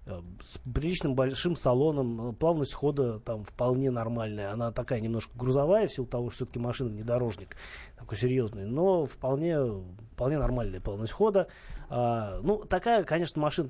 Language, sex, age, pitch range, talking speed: Russian, male, 30-49, 120-150 Hz, 145 wpm